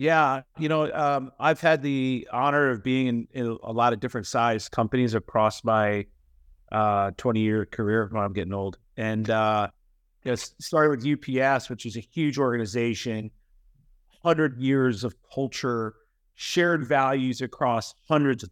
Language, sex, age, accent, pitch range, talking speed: English, male, 30-49, American, 110-135 Hz, 160 wpm